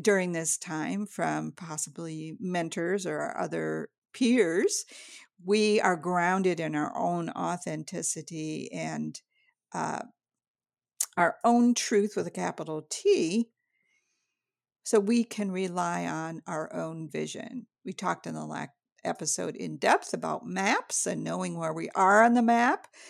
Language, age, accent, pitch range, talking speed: English, 50-69, American, 160-215 Hz, 135 wpm